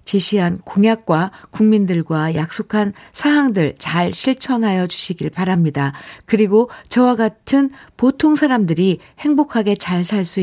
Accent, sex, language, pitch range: native, female, Korean, 170-220 Hz